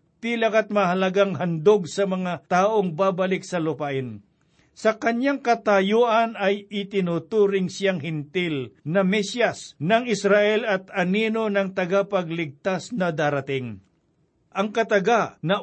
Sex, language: male, Filipino